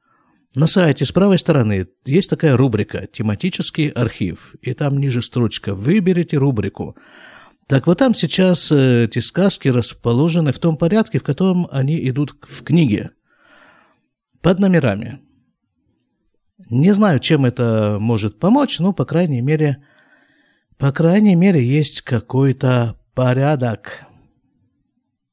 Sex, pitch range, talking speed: male, 120-175 Hz, 120 wpm